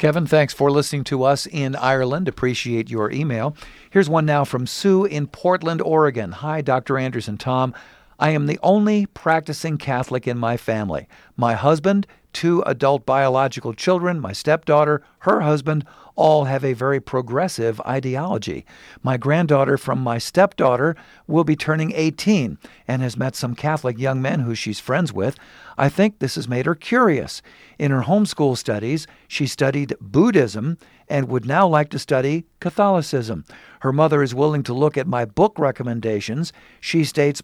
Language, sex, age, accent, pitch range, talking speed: English, male, 50-69, American, 130-160 Hz, 165 wpm